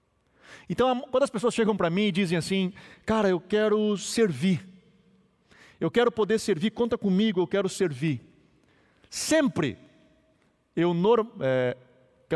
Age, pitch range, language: 40-59, 165-235 Hz, Portuguese